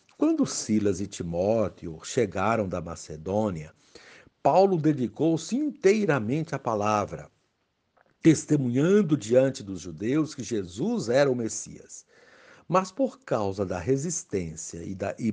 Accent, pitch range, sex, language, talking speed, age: Brazilian, 110-165 Hz, male, Portuguese, 110 wpm, 60-79